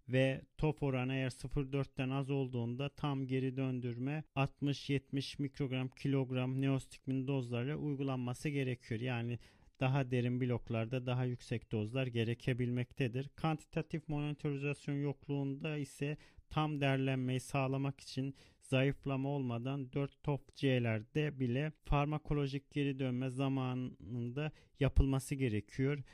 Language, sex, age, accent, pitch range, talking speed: Turkish, male, 40-59, native, 135-150 Hz, 105 wpm